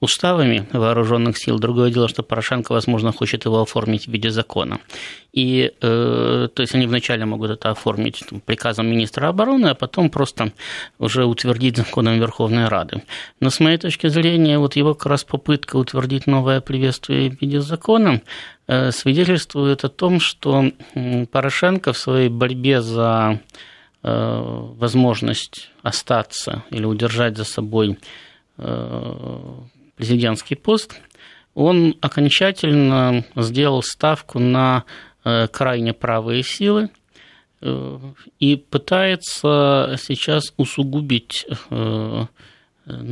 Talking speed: 115 wpm